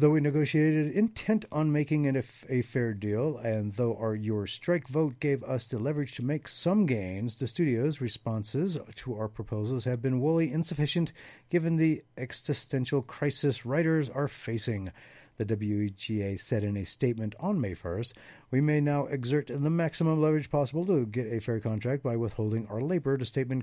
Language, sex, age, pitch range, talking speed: English, male, 50-69, 115-145 Hz, 180 wpm